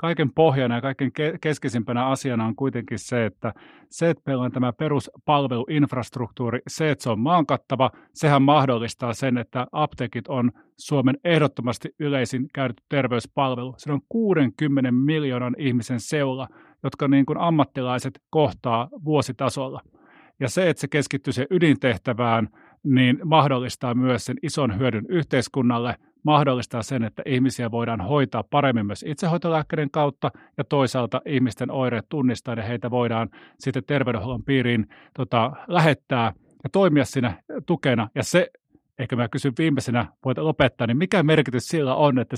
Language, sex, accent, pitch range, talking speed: Finnish, male, native, 125-150 Hz, 135 wpm